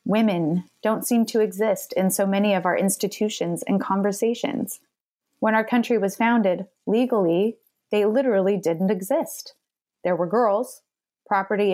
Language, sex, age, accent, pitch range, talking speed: English, female, 20-39, American, 180-220 Hz, 140 wpm